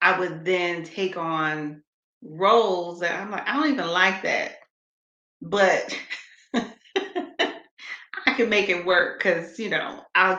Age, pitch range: 30-49, 155-185 Hz